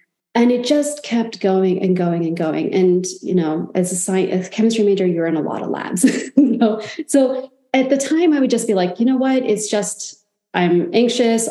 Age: 30-49